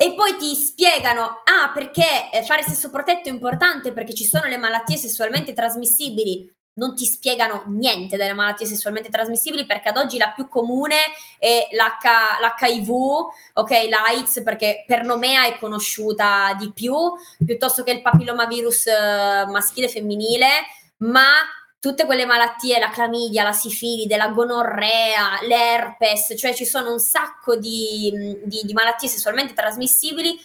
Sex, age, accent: female, 20-39, native